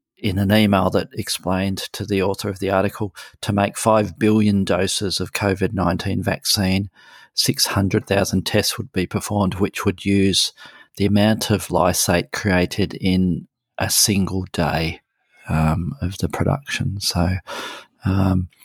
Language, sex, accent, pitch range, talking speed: English, male, Australian, 95-110 Hz, 135 wpm